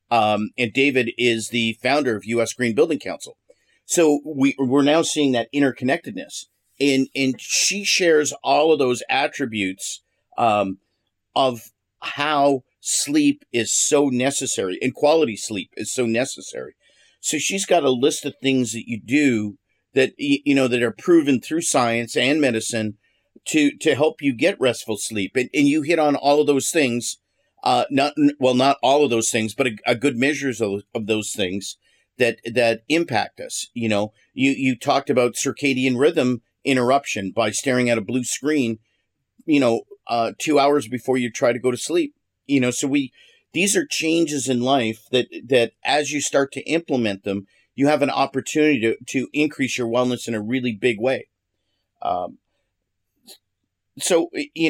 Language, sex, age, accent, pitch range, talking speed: English, male, 50-69, American, 115-145 Hz, 170 wpm